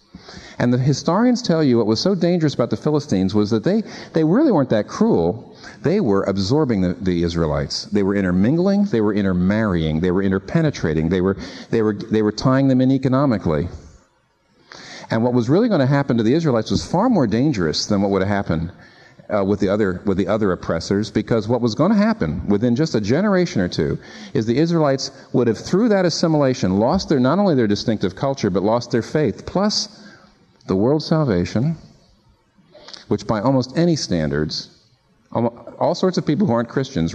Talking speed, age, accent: 190 wpm, 50-69, American